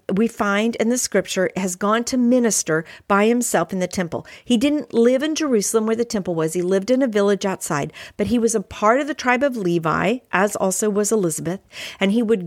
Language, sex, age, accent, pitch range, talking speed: English, female, 50-69, American, 195-260 Hz, 220 wpm